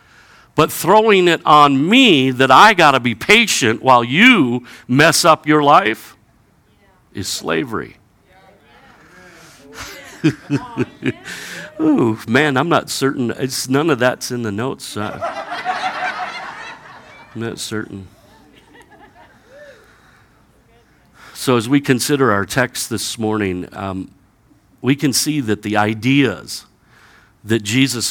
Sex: male